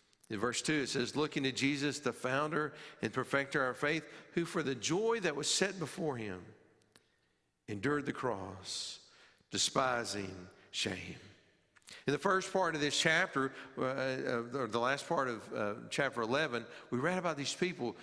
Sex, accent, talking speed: male, American, 175 wpm